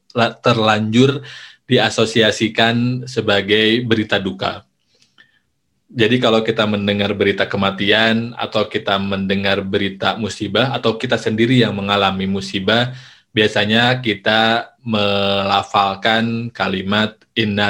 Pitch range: 100-115 Hz